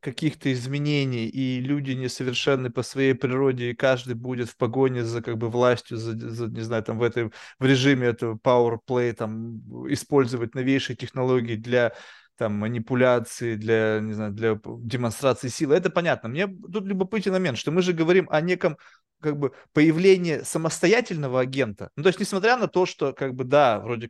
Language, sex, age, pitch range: Russian, male, 20-39, 125-160 Hz